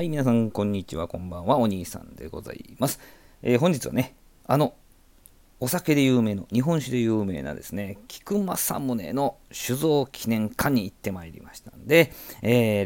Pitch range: 95-135 Hz